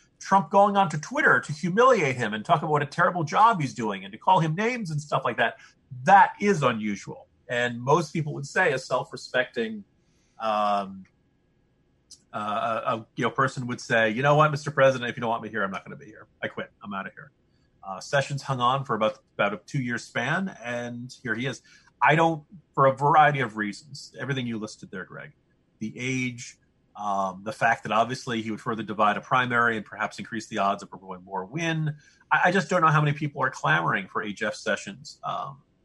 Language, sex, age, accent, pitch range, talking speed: English, male, 40-59, American, 110-155 Hz, 220 wpm